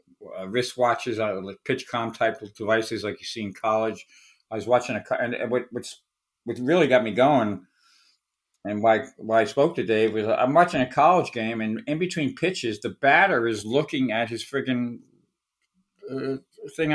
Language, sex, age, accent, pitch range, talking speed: English, male, 50-69, American, 115-140 Hz, 175 wpm